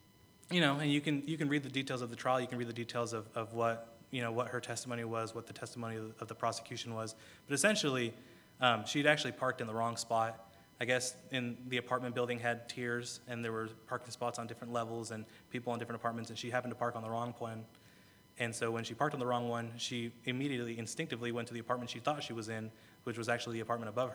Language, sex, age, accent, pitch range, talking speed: English, male, 20-39, American, 115-125 Hz, 255 wpm